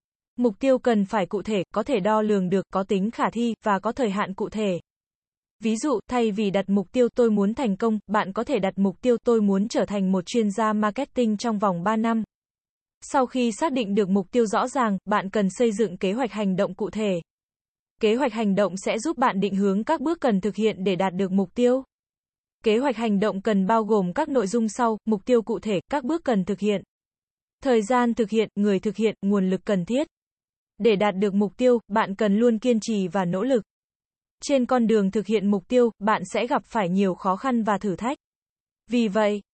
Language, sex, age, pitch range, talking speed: Vietnamese, female, 20-39, 200-240 Hz, 230 wpm